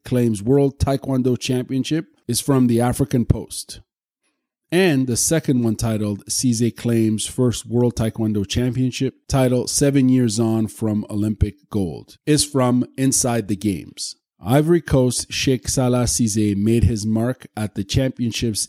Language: English